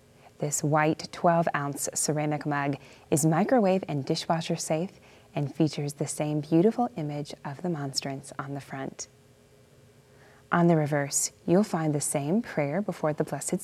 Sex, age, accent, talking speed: female, 20-39, American, 145 wpm